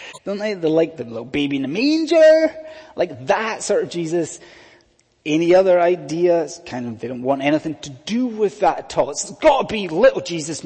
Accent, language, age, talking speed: British, English, 30-49, 195 wpm